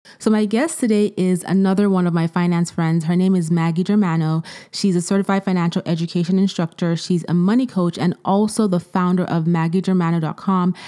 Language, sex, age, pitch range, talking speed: English, female, 20-39, 170-195 Hz, 175 wpm